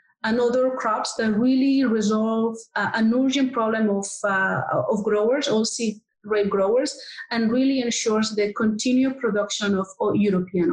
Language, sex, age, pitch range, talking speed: English, female, 30-49, 205-245 Hz, 145 wpm